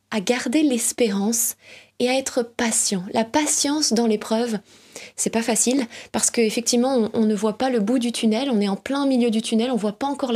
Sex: female